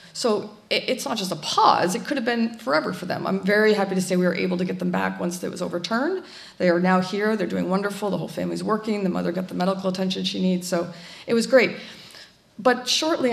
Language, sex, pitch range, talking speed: English, female, 180-220 Hz, 245 wpm